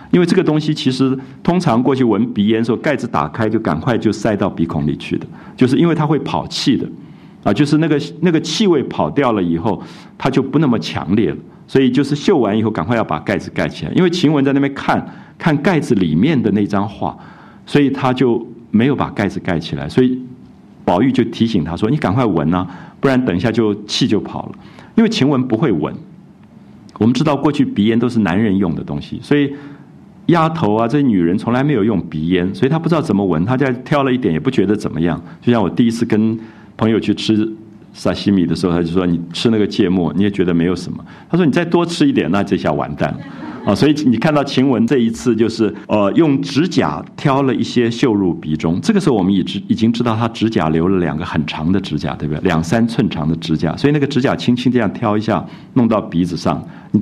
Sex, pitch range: male, 95-135 Hz